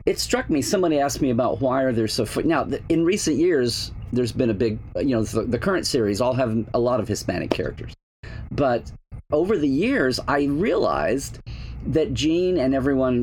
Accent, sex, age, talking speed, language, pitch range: American, male, 40-59, 195 wpm, English, 115-145 Hz